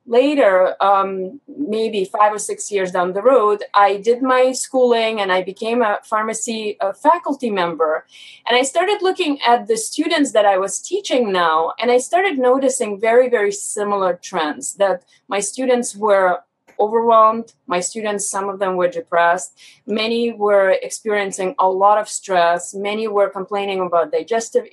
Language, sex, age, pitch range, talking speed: English, female, 20-39, 195-255 Hz, 160 wpm